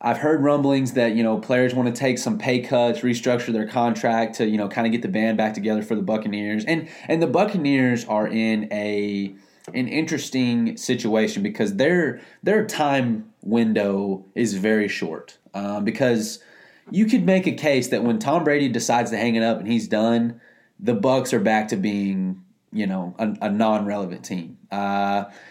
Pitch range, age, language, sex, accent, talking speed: 110-130 Hz, 20-39, English, male, American, 185 wpm